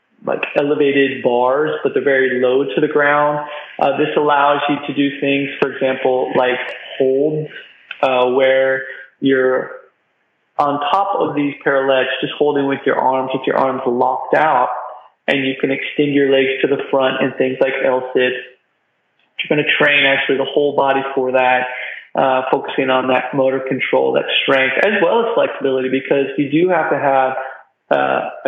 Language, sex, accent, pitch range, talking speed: English, male, American, 130-150 Hz, 170 wpm